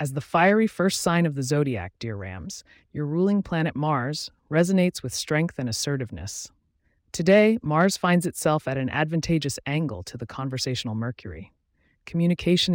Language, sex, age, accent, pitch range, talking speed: English, female, 30-49, American, 115-160 Hz, 150 wpm